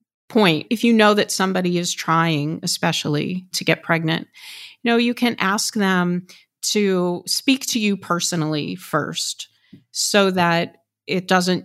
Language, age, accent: English, 40-59, American